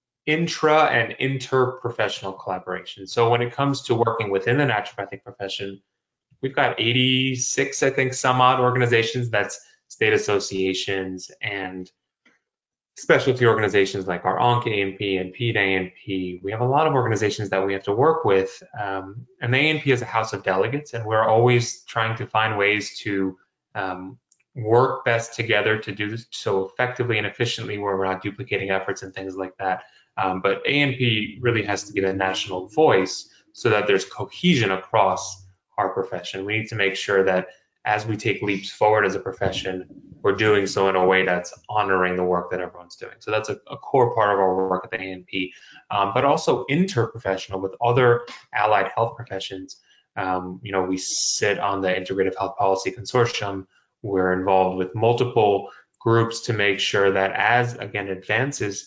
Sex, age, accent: male, 20-39, American